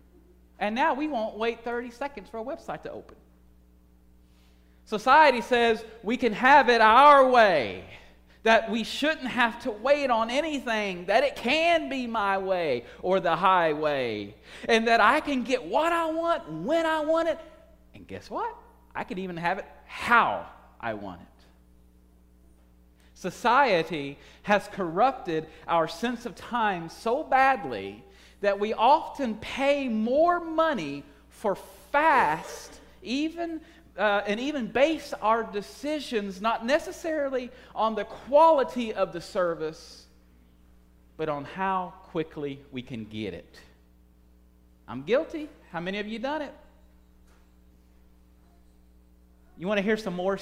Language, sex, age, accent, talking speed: English, male, 40-59, American, 135 wpm